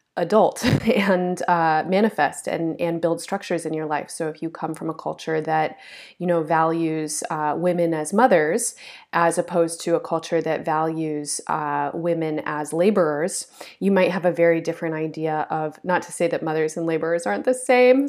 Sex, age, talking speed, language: female, 30-49, 180 wpm, English